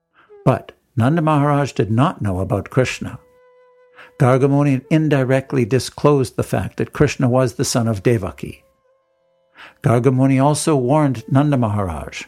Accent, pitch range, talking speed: American, 125-165 Hz, 120 wpm